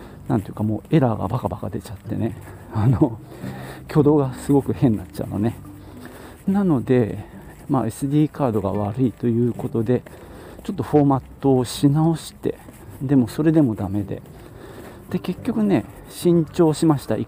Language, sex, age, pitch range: Japanese, male, 40-59, 105-160 Hz